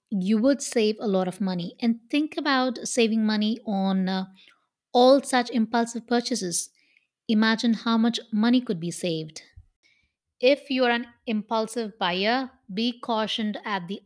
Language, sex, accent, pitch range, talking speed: English, female, Indian, 195-235 Hz, 150 wpm